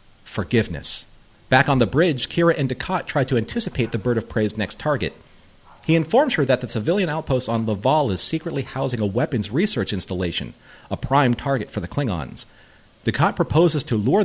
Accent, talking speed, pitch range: American, 180 wpm, 105-145 Hz